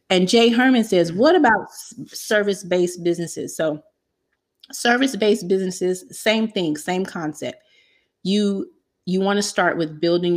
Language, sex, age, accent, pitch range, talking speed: English, female, 30-49, American, 160-195 Hz, 120 wpm